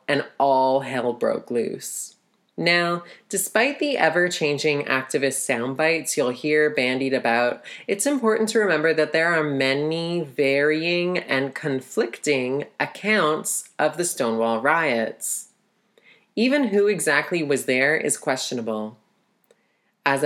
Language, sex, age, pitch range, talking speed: English, female, 30-49, 135-175 Hz, 115 wpm